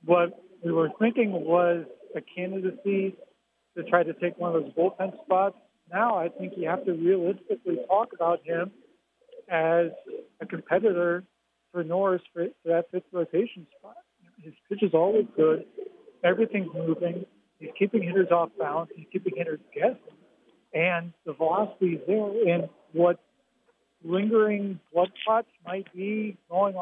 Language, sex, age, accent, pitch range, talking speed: English, male, 40-59, American, 170-210 Hz, 150 wpm